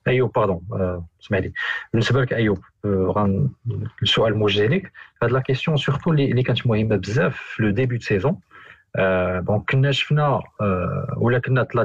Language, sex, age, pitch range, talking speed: Arabic, male, 40-59, 105-135 Hz, 130 wpm